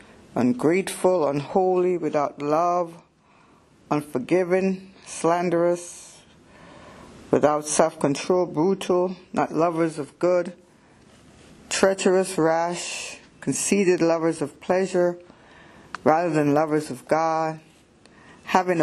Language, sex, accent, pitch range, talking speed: English, female, American, 155-185 Hz, 80 wpm